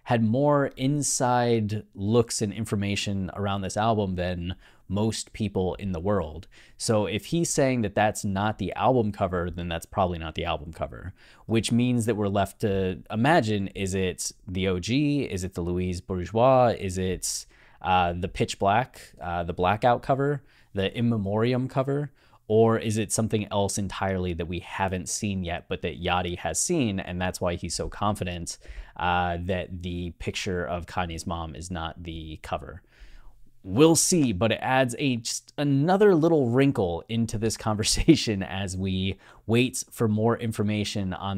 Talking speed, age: 165 wpm, 20-39